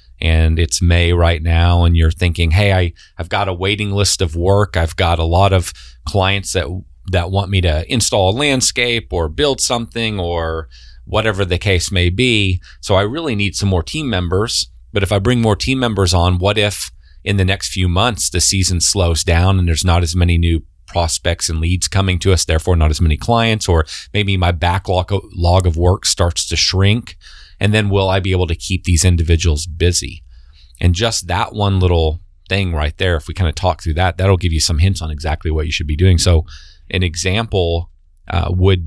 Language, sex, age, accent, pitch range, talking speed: English, male, 30-49, American, 80-95 Hz, 210 wpm